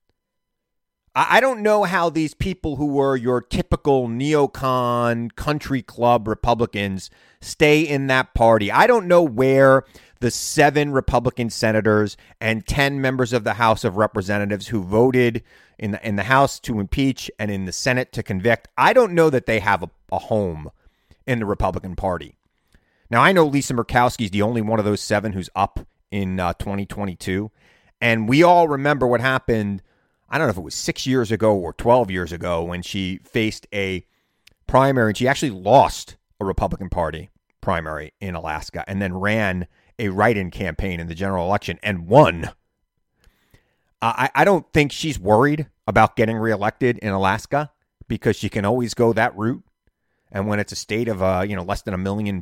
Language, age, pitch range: English, 30-49, 95-130 Hz